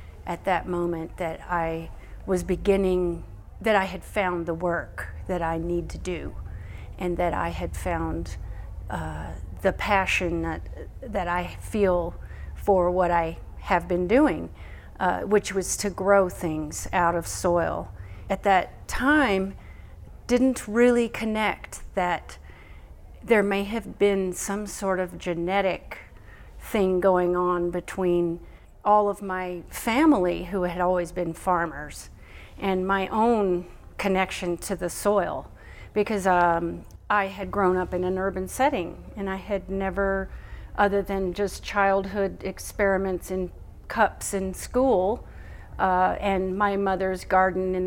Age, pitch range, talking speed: 40-59, 175-200 Hz, 135 wpm